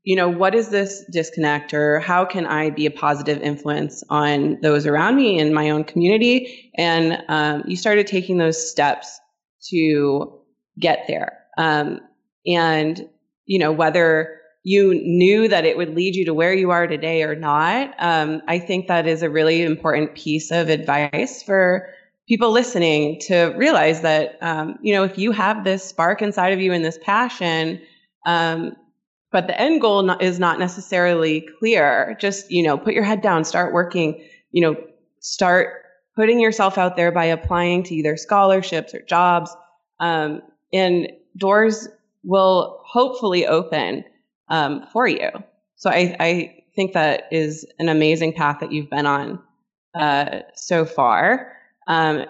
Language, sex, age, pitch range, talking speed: English, female, 20-39, 155-190 Hz, 160 wpm